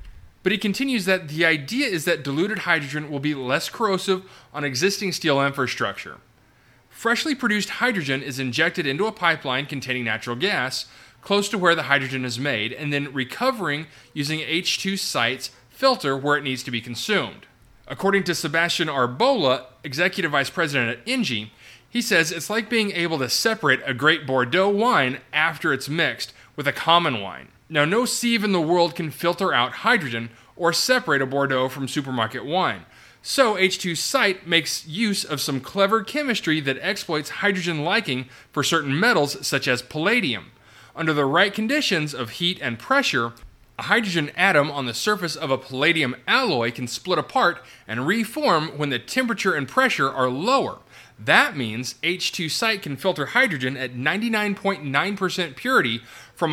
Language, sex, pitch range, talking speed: English, male, 130-190 Hz, 160 wpm